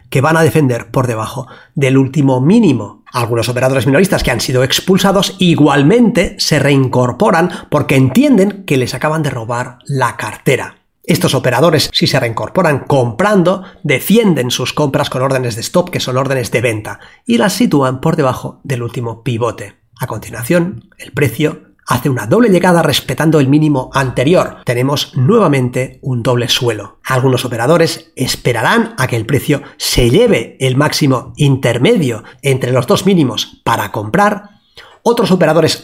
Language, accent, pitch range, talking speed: Spanish, Spanish, 130-175 Hz, 150 wpm